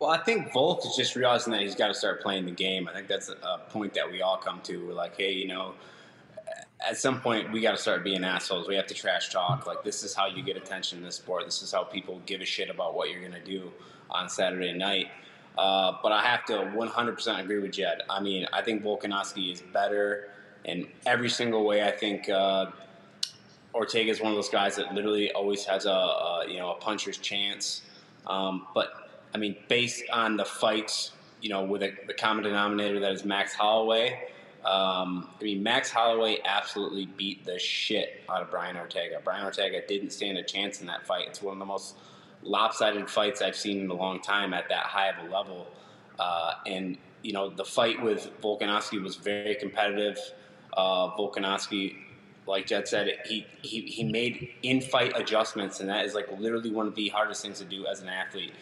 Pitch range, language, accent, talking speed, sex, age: 95-105 Hz, English, American, 210 wpm, male, 20-39